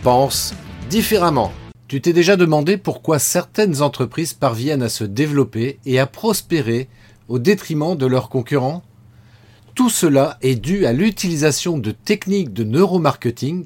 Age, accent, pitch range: 40-59, French, 115-170 Hz